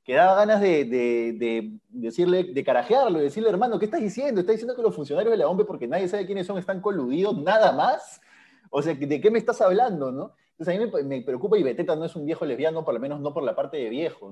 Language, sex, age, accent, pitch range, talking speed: Spanish, male, 20-39, Argentinian, 145-200 Hz, 255 wpm